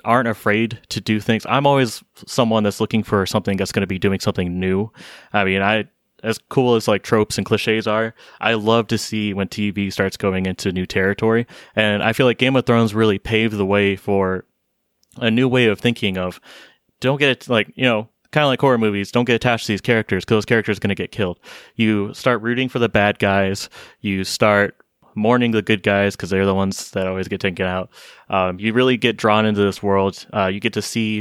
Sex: male